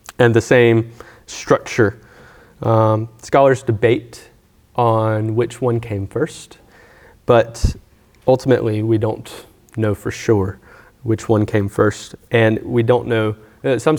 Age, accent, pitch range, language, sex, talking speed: 30-49, American, 110-125 Hz, English, male, 125 wpm